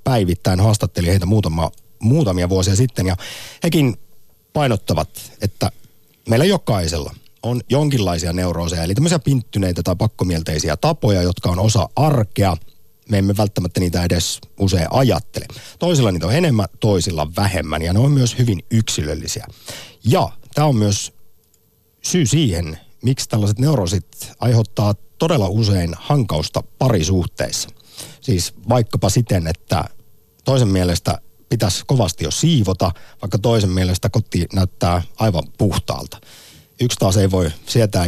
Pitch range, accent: 90-120 Hz, native